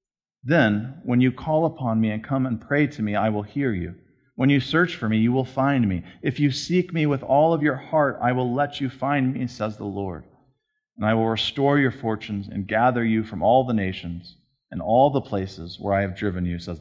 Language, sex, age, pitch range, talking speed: English, male, 40-59, 105-145 Hz, 235 wpm